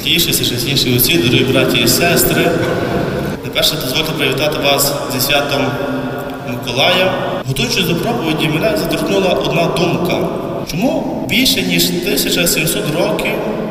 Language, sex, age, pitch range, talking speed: Ukrainian, male, 30-49, 140-175 Hz, 115 wpm